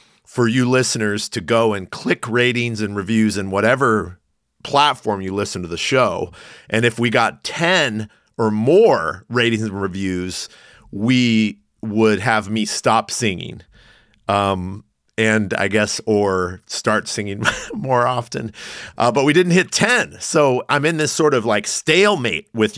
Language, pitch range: English, 100-120 Hz